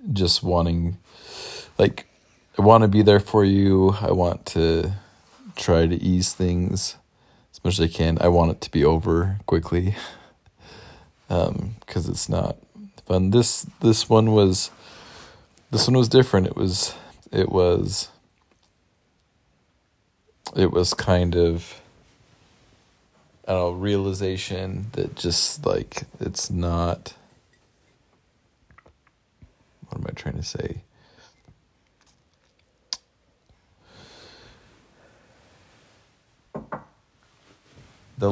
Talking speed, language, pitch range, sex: 100 wpm, English, 85-105 Hz, male